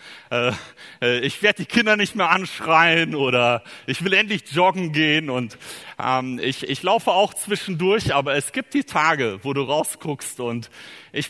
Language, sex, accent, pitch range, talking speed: German, male, German, 135-200 Hz, 155 wpm